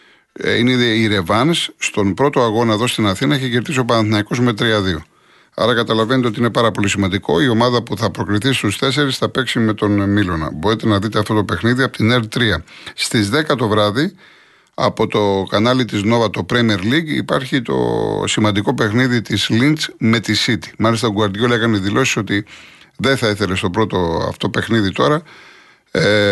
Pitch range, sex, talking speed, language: 105-130 Hz, male, 180 wpm, Greek